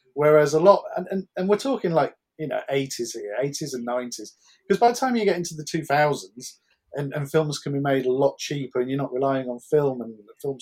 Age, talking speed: 40-59, 235 wpm